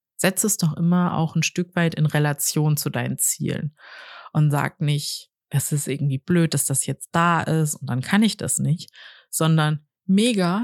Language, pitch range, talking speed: German, 145-180 Hz, 185 wpm